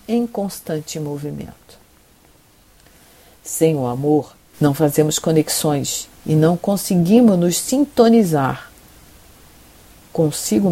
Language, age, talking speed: Portuguese, 50-69, 85 wpm